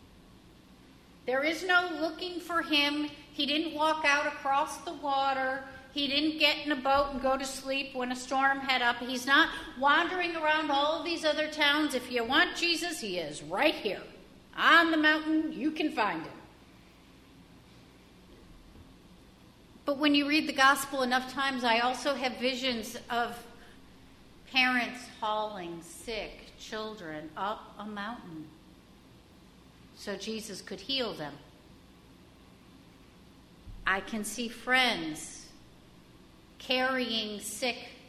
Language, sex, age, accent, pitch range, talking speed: English, female, 50-69, American, 240-300 Hz, 130 wpm